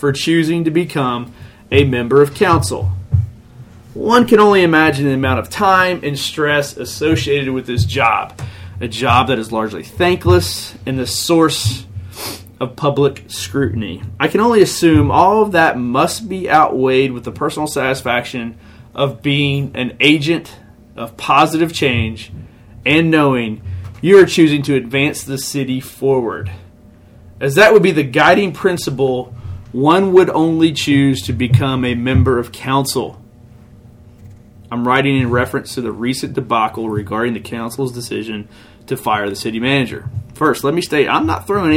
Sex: male